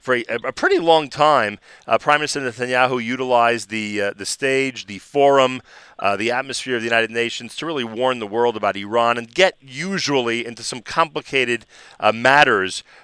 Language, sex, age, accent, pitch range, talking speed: English, male, 40-59, American, 115-145 Hz, 180 wpm